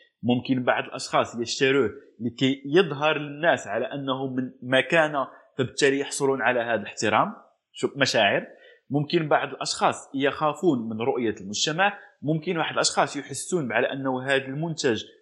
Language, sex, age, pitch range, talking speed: Arabic, male, 20-39, 135-170 Hz, 125 wpm